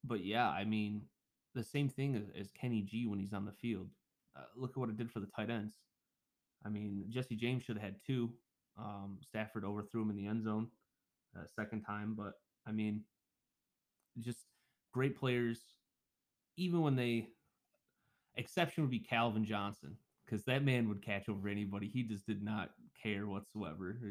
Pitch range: 105-125 Hz